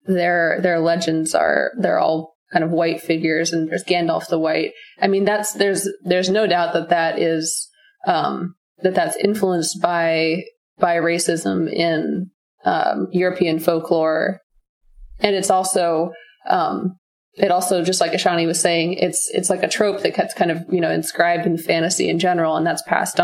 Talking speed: 170 wpm